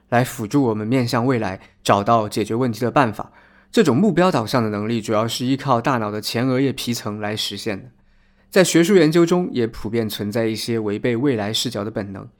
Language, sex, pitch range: Chinese, male, 110-140 Hz